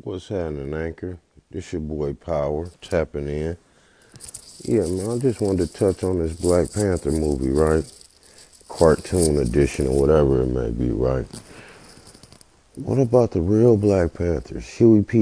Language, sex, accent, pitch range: English, male, American, 85-110 Hz